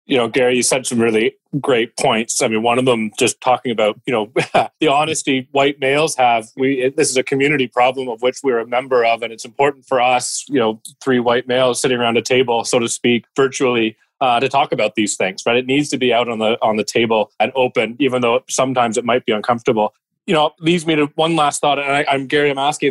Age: 30-49